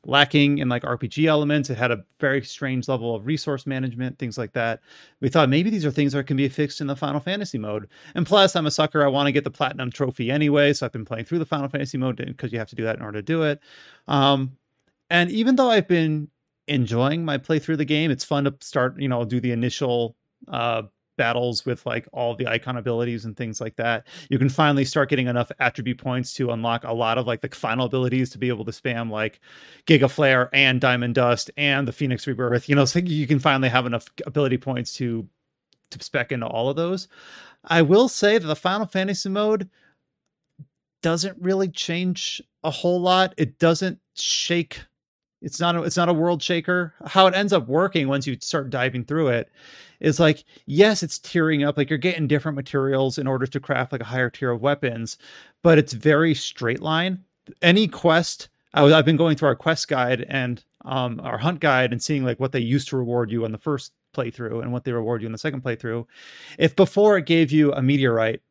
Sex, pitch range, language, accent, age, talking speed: male, 125-160 Hz, English, American, 30-49, 220 wpm